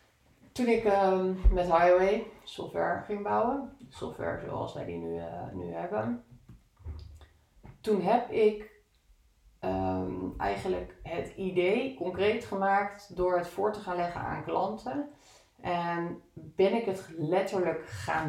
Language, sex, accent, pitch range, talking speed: Dutch, female, Dutch, 150-215 Hz, 120 wpm